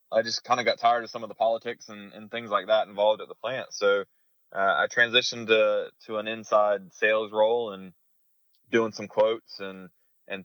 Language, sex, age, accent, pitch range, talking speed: English, male, 20-39, American, 95-115 Hz, 205 wpm